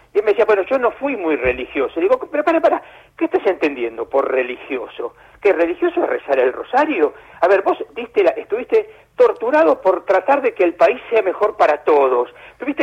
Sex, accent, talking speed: male, Argentinian, 205 wpm